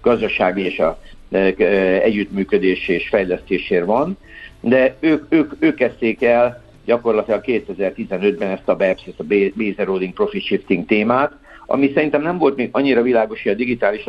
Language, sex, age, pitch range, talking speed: Hungarian, male, 60-79, 100-125 Hz, 150 wpm